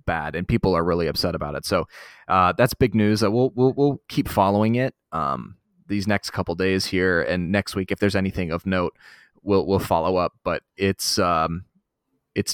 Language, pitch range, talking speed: English, 90-105 Hz, 200 wpm